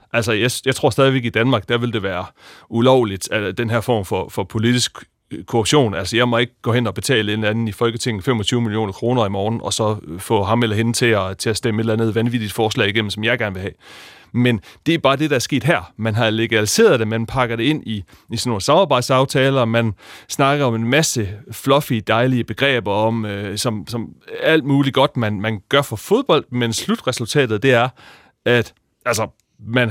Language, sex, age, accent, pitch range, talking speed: Danish, male, 30-49, native, 110-130 Hz, 220 wpm